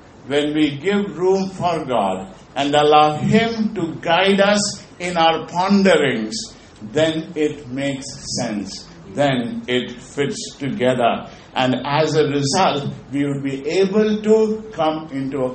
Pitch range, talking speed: 140-205 Hz, 135 wpm